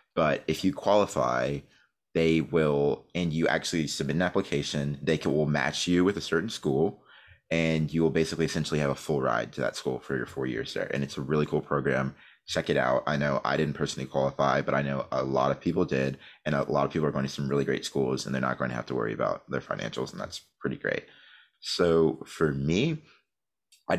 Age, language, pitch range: 30-49, English, 70-85 Hz